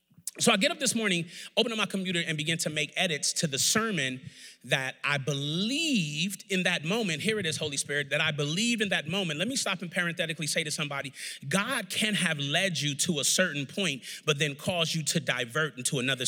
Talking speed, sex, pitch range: 220 wpm, male, 155-200 Hz